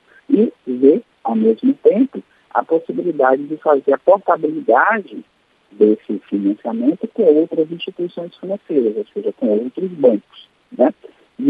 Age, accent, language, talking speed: 40-59, Brazilian, Portuguese, 125 wpm